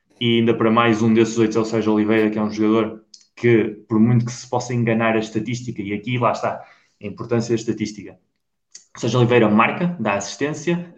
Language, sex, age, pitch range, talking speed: Portuguese, male, 20-39, 105-120 Hz, 200 wpm